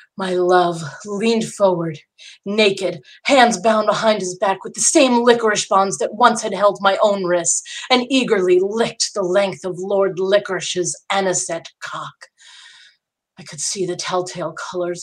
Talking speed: 150 wpm